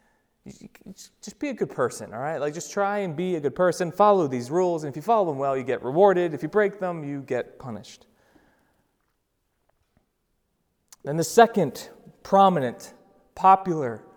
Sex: male